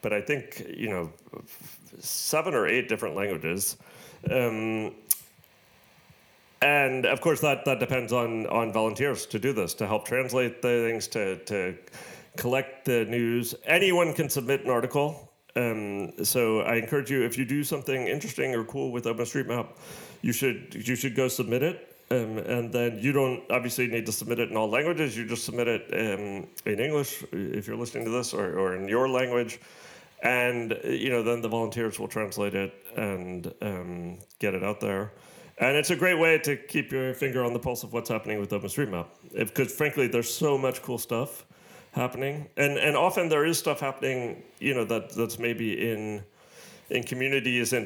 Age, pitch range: 40-59, 110-135 Hz